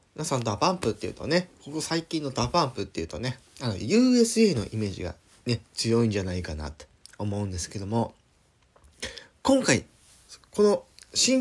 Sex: male